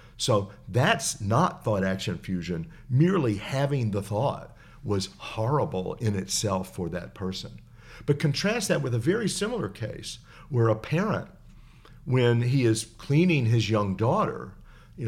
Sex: male